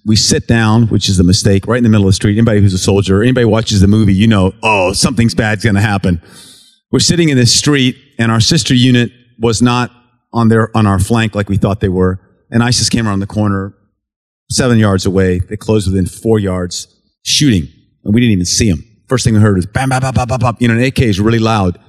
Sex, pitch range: male, 100-120 Hz